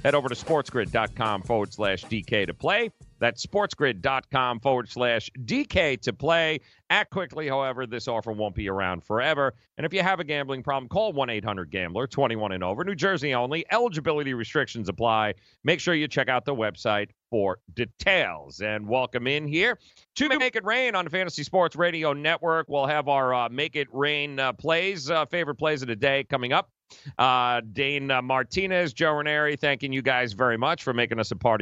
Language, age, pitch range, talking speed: English, 40-59, 125-170 Hz, 190 wpm